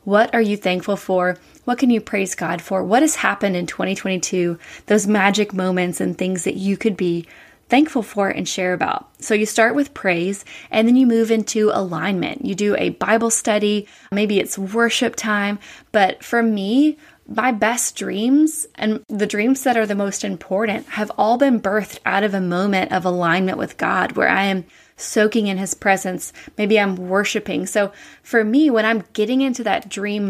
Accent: American